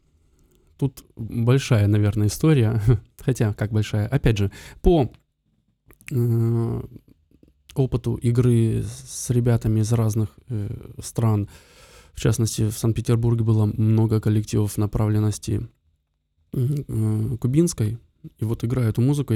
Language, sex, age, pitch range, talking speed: Russian, male, 20-39, 110-120 Hz, 105 wpm